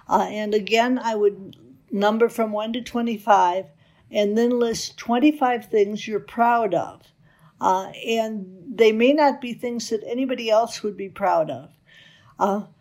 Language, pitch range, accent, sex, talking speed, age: English, 195-240 Hz, American, female, 155 wpm, 60-79